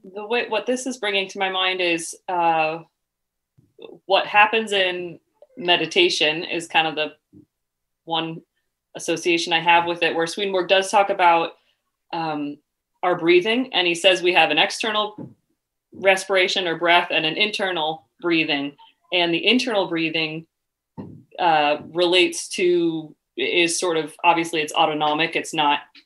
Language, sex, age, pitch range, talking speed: English, female, 30-49, 155-180 Hz, 145 wpm